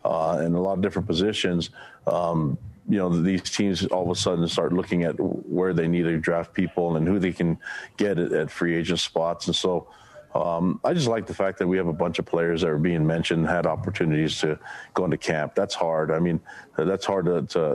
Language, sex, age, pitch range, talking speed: English, male, 40-59, 85-95 Hz, 240 wpm